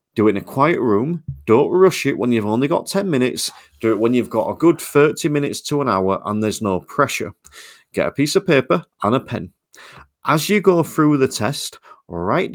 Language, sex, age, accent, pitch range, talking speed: English, male, 30-49, British, 110-150 Hz, 220 wpm